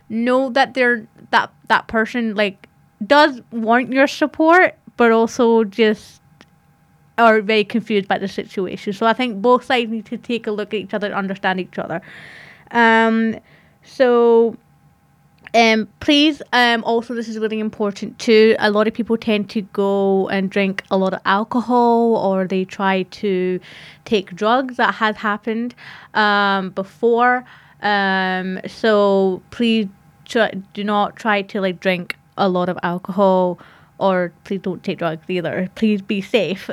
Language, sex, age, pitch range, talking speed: English, female, 20-39, 190-225 Hz, 155 wpm